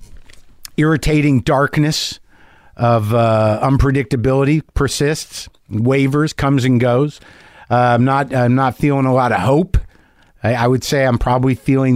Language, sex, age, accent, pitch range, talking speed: English, male, 50-69, American, 120-175 Hz, 135 wpm